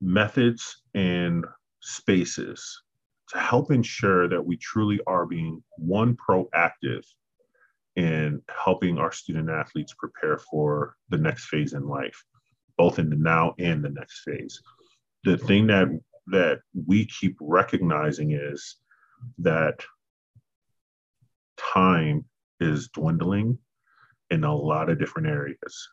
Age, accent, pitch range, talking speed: 40-59, American, 80-115 Hz, 120 wpm